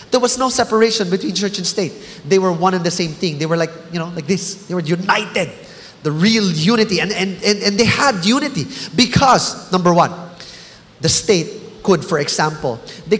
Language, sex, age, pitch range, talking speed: English, male, 20-39, 175-215 Hz, 200 wpm